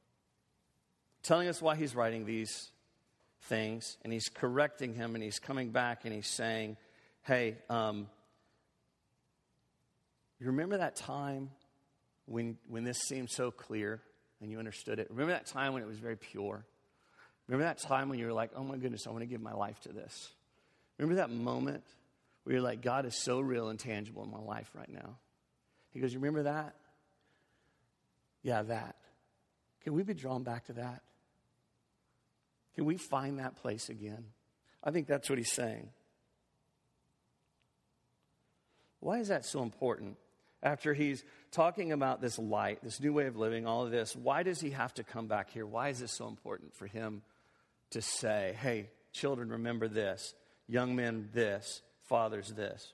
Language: English